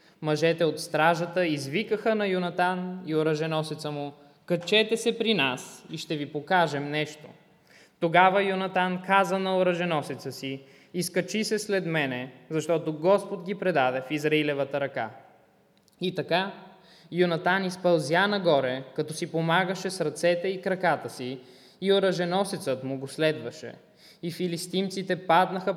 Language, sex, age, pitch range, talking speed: English, male, 20-39, 145-185 Hz, 130 wpm